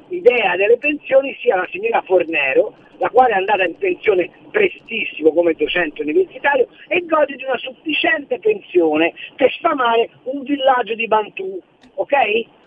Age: 50-69